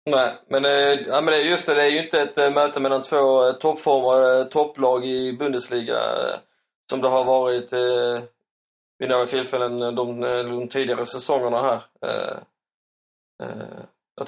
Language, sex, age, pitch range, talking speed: Swedish, male, 20-39, 125-130 Hz, 120 wpm